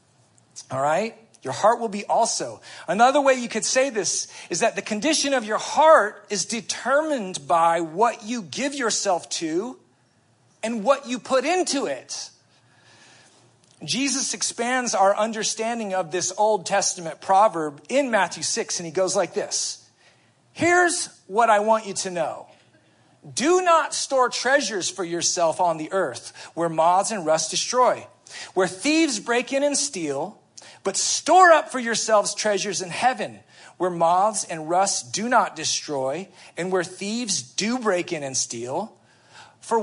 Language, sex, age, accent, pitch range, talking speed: English, male, 40-59, American, 170-250 Hz, 155 wpm